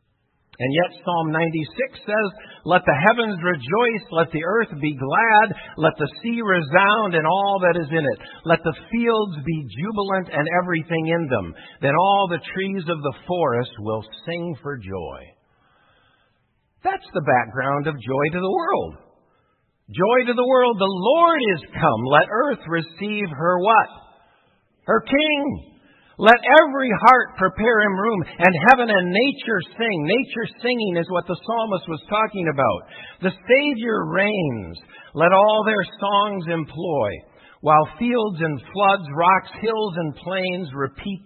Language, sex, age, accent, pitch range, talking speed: English, male, 60-79, American, 155-215 Hz, 150 wpm